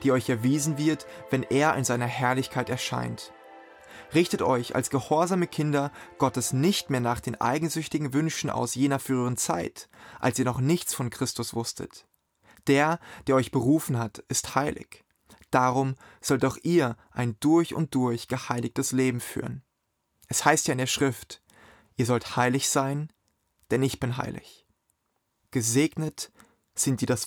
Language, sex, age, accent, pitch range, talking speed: German, male, 30-49, German, 125-150 Hz, 150 wpm